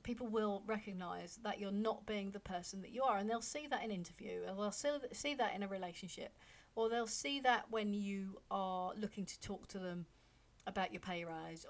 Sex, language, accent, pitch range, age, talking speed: female, English, British, 190-235 Hz, 40-59, 215 wpm